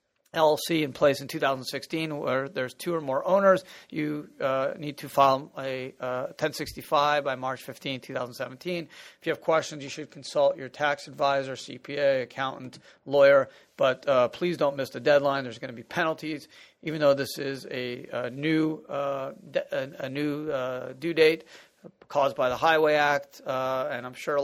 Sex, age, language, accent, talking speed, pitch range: male, 40-59, English, American, 180 wpm, 135-160 Hz